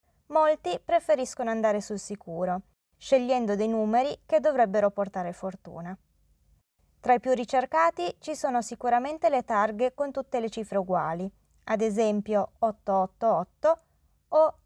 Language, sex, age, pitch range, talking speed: Italian, female, 20-39, 200-260 Hz, 125 wpm